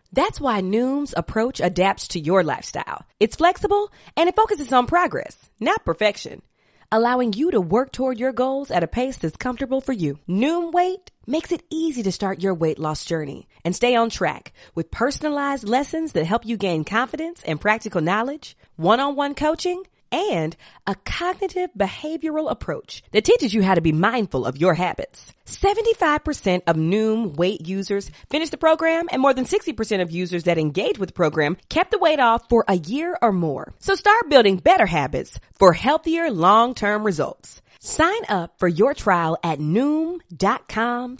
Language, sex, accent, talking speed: English, female, American, 170 wpm